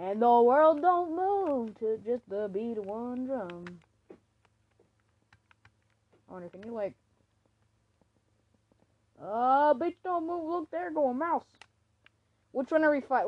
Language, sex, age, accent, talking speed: English, female, 20-39, American, 140 wpm